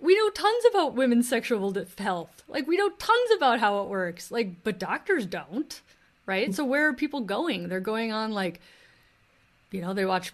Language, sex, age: English, female, 30-49